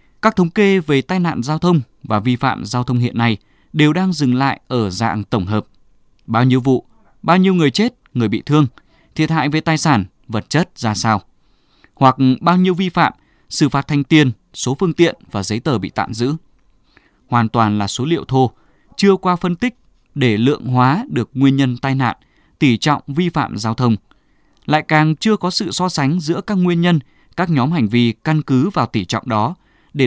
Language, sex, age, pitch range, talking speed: Vietnamese, male, 20-39, 115-165 Hz, 210 wpm